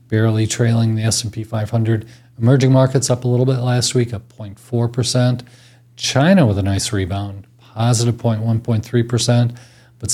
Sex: male